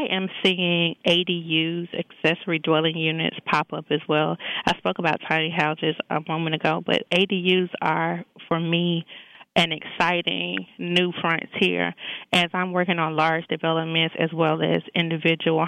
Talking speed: 145 wpm